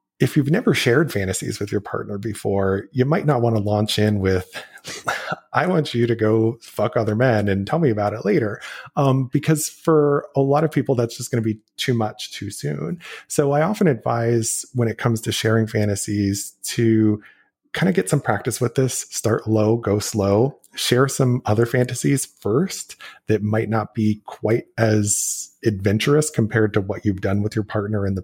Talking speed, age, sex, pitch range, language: 195 wpm, 30-49, male, 105-125 Hz, English